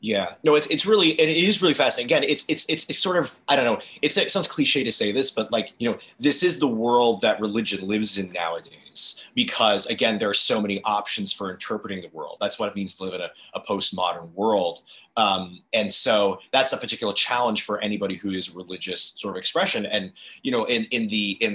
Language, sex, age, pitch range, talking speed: English, male, 30-49, 100-155 Hz, 230 wpm